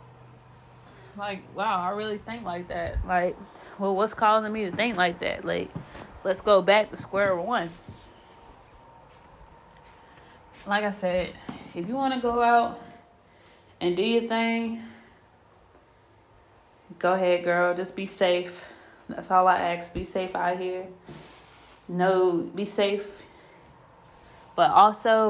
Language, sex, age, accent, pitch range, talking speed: English, female, 20-39, American, 170-215 Hz, 130 wpm